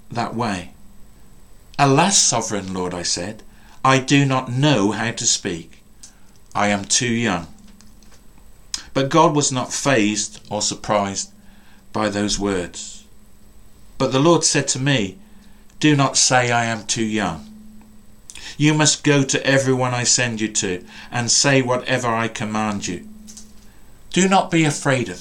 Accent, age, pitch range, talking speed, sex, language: British, 50-69, 105-135 Hz, 145 wpm, male, English